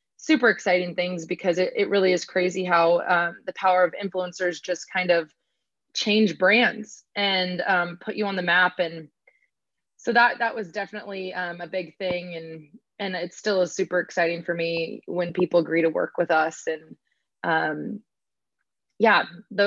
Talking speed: 170 wpm